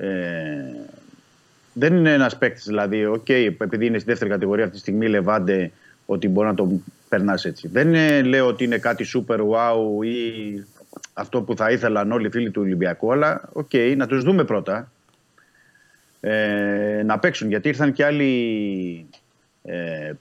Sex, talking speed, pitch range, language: male, 165 wpm, 110-145 Hz, Greek